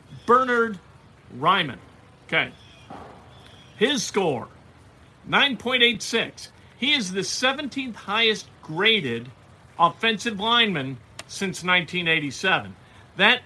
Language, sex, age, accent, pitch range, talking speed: English, male, 50-69, American, 135-205 Hz, 75 wpm